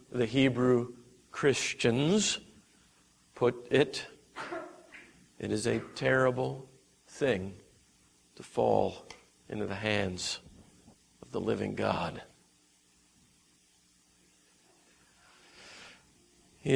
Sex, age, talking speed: male, 50-69, 70 wpm